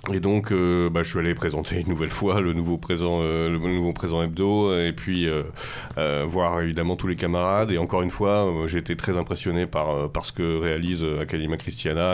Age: 30-49